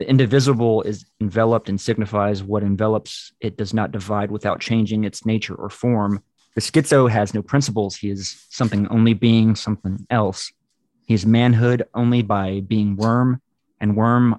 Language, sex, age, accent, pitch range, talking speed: English, male, 30-49, American, 105-115 Hz, 165 wpm